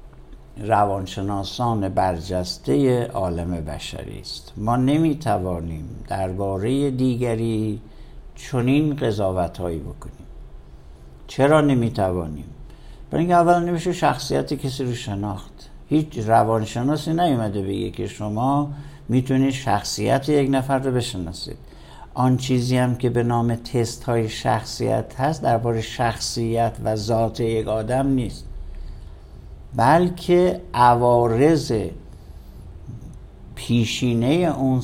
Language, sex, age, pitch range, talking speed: Persian, male, 60-79, 105-135 Hz, 95 wpm